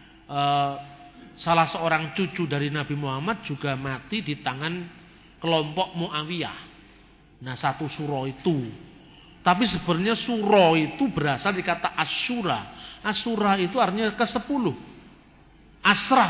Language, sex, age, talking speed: Indonesian, male, 40-59, 105 wpm